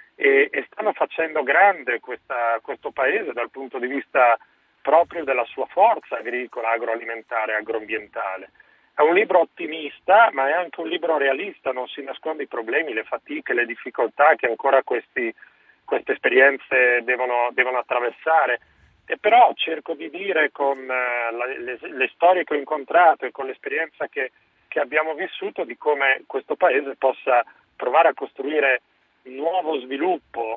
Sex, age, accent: male, 40-59, native